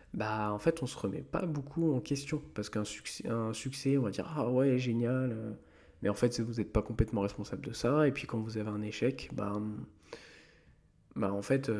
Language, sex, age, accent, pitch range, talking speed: French, male, 20-39, French, 105-135 Hz, 225 wpm